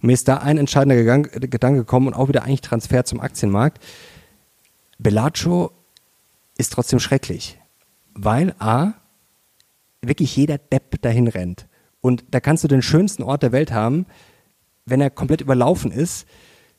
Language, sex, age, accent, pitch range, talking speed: German, male, 40-59, German, 120-145 Hz, 145 wpm